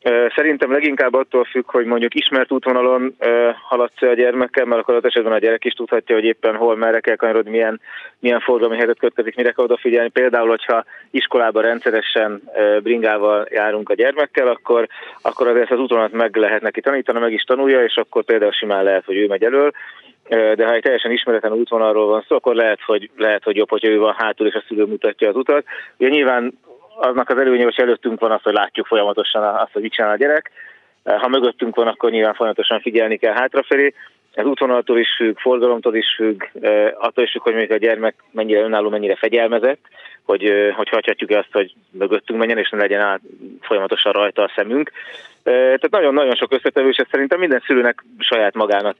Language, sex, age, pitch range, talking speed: Hungarian, male, 30-49, 110-125 Hz, 185 wpm